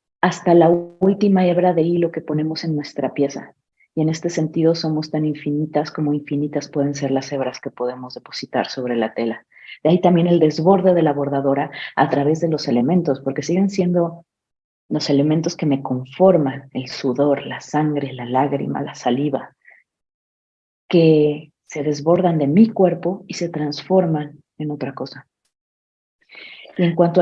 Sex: female